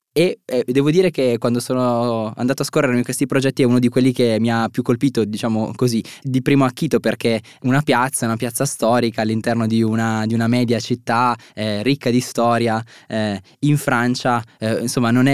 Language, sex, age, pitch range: Italian, male, 20-39, 115-145 Hz